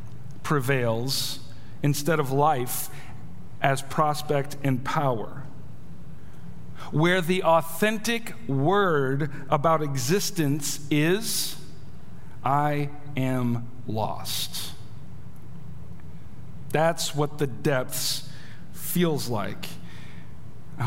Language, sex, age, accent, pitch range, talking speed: English, male, 50-69, American, 140-195 Hz, 70 wpm